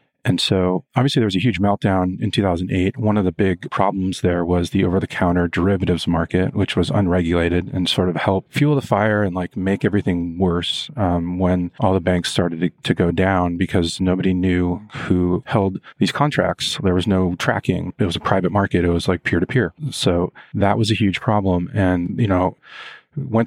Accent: American